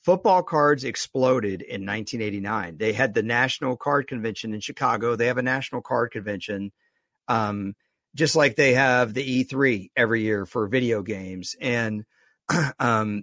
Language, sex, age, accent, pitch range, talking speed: English, male, 50-69, American, 115-155 Hz, 150 wpm